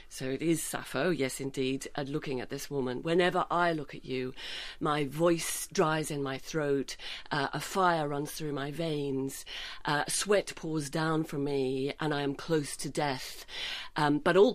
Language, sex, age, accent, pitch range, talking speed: English, female, 40-59, British, 140-170 Hz, 175 wpm